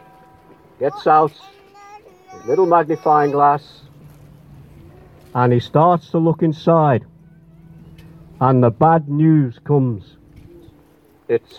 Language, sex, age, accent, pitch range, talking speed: English, male, 60-79, British, 145-185 Hz, 90 wpm